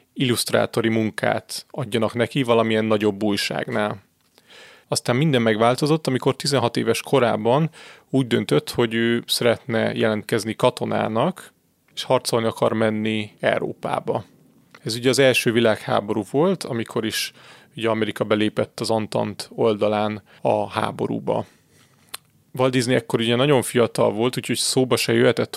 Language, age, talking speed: Hungarian, 30-49, 125 wpm